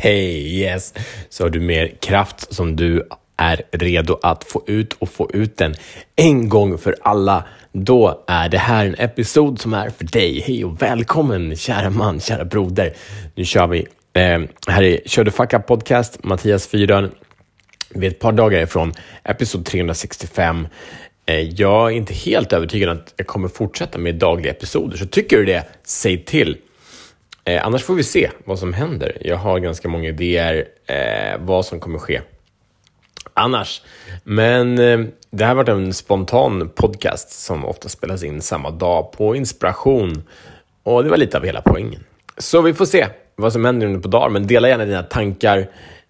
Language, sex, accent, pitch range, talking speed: Swedish, male, Norwegian, 85-110 Hz, 175 wpm